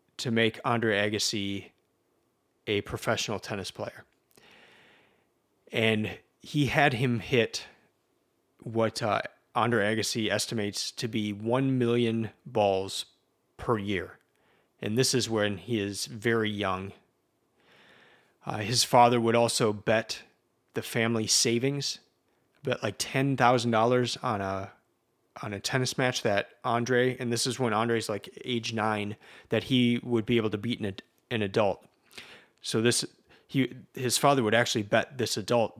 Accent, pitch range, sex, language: American, 105-125 Hz, male, English